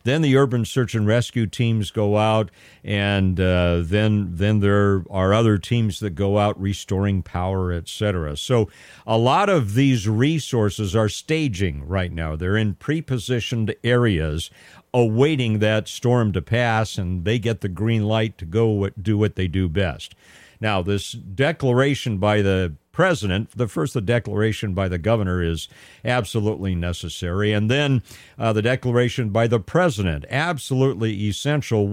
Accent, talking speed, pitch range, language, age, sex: American, 150 wpm, 100-130 Hz, English, 50-69, male